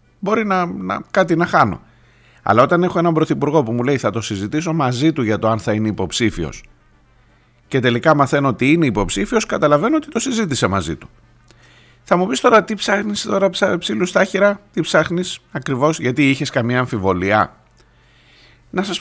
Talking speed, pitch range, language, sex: 175 wpm, 115-165 Hz, Greek, male